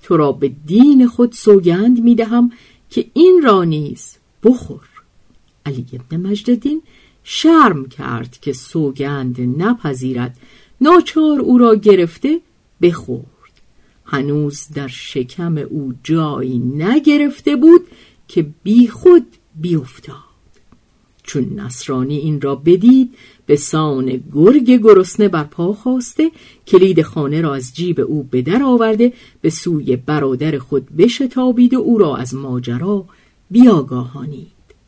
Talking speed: 115 wpm